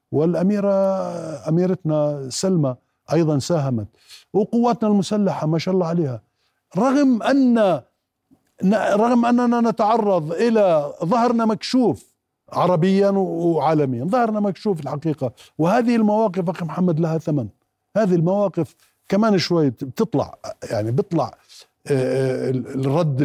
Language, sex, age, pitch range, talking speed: Arabic, male, 50-69, 145-190 Hz, 100 wpm